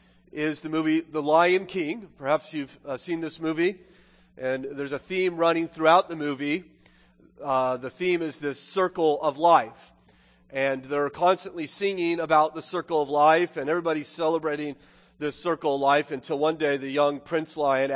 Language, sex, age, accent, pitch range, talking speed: English, male, 30-49, American, 145-185 Hz, 170 wpm